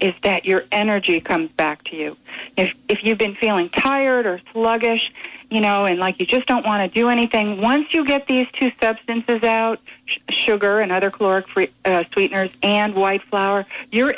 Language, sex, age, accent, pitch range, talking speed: English, female, 50-69, American, 190-250 Hz, 195 wpm